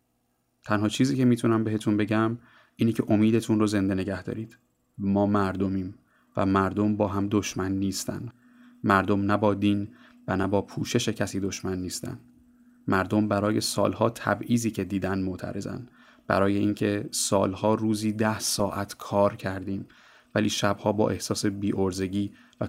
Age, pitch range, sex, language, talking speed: 30-49, 95-110 Hz, male, Persian, 135 wpm